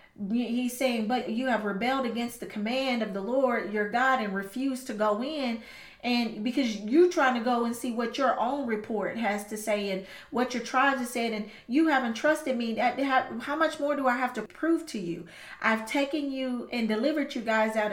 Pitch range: 225-275 Hz